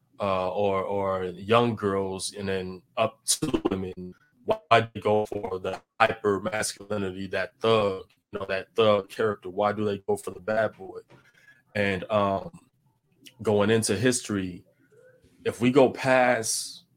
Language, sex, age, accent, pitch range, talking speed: English, male, 20-39, American, 95-120 Hz, 150 wpm